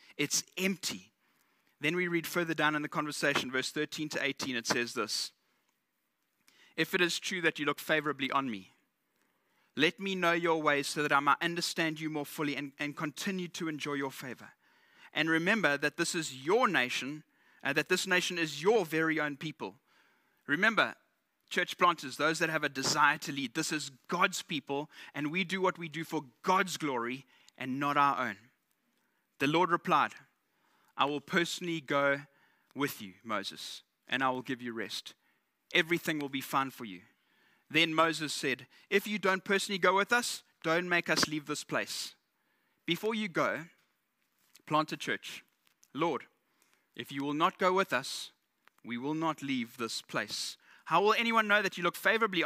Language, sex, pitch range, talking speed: English, male, 145-175 Hz, 180 wpm